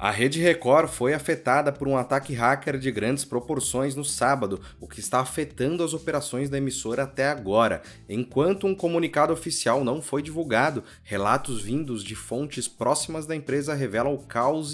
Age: 20-39